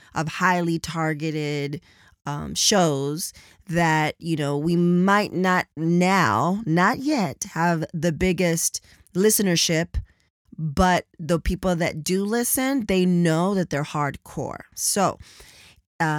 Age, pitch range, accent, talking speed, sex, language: 20-39, 160-195 Hz, American, 115 wpm, female, English